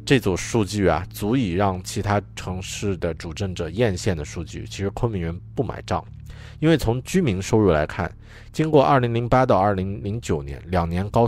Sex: male